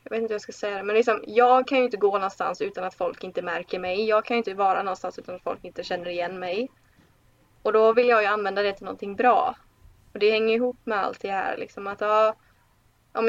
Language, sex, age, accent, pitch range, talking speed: Swedish, female, 20-39, native, 195-235 Hz, 255 wpm